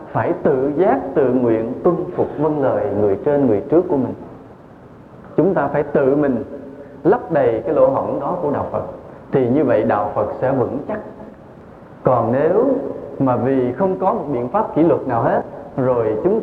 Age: 20-39